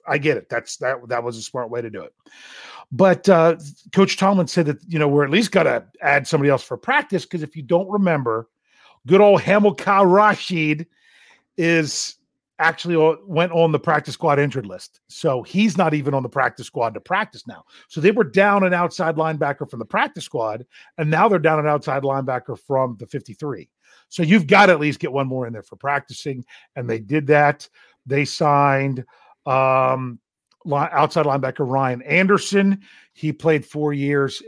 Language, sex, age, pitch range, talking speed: English, male, 40-59, 135-170 Hz, 190 wpm